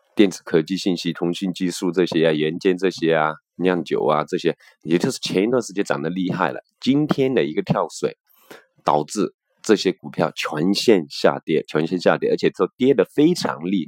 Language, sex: Chinese, male